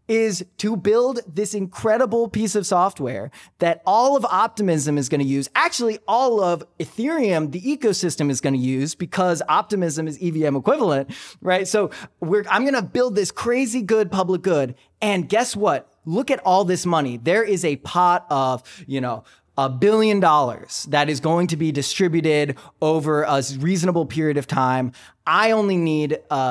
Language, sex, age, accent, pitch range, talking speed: English, male, 20-39, American, 140-190 Hz, 170 wpm